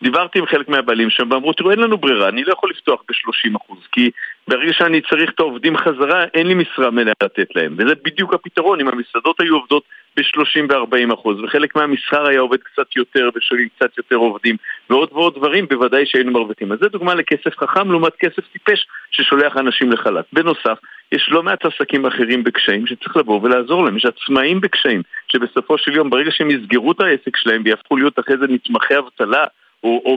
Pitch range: 120-165 Hz